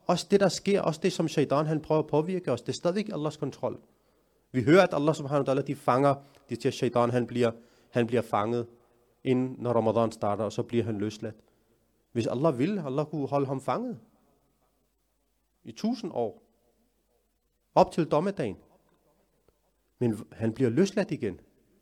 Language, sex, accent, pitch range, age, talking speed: Danish, male, native, 120-165 Hz, 30-49, 175 wpm